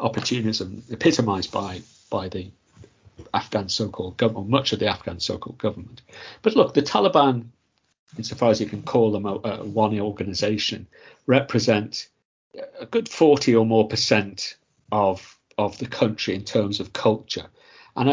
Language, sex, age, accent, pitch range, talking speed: English, male, 50-69, British, 105-120 Hz, 140 wpm